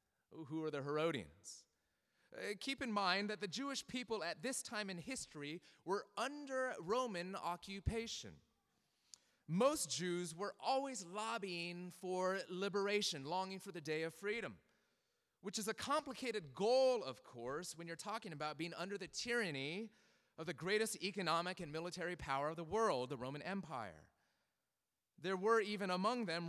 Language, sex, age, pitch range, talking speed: English, male, 30-49, 155-210 Hz, 150 wpm